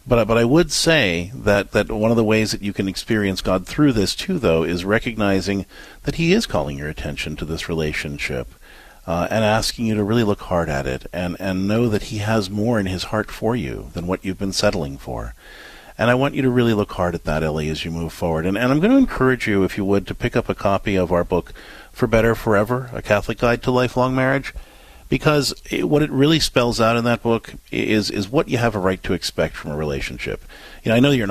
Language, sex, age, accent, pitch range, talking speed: English, male, 50-69, American, 95-125 Hz, 245 wpm